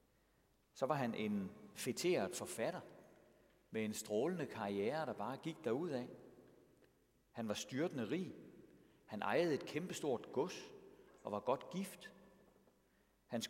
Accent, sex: native, male